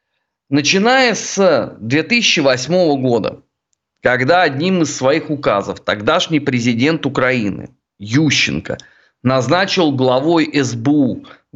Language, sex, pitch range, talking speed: Russian, male, 140-210 Hz, 85 wpm